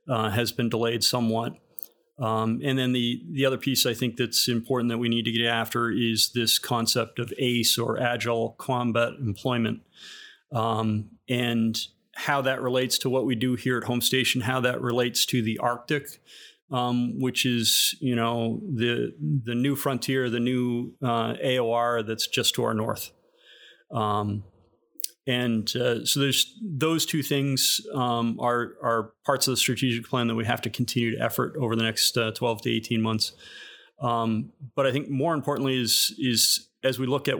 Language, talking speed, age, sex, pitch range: English, 180 wpm, 30-49, male, 115-130 Hz